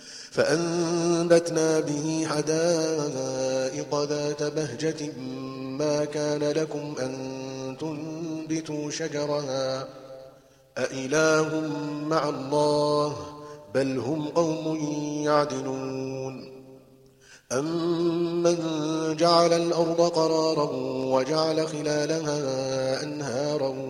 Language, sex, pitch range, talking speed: Arabic, male, 145-160 Hz, 65 wpm